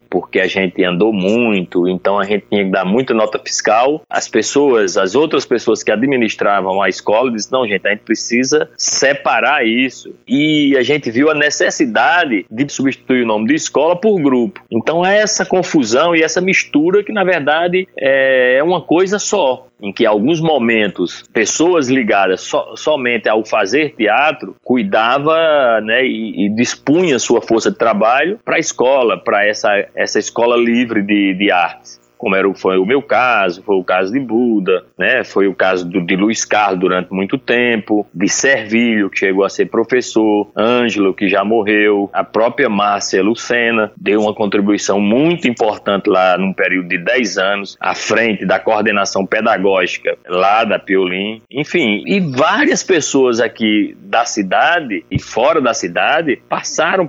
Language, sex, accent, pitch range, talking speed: Portuguese, male, Brazilian, 100-150 Hz, 170 wpm